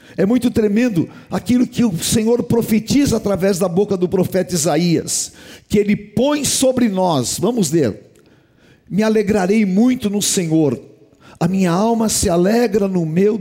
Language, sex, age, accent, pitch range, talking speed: Portuguese, male, 60-79, Brazilian, 150-210 Hz, 150 wpm